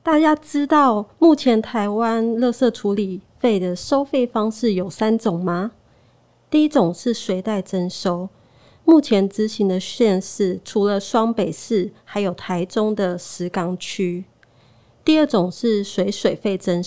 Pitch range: 185-235 Hz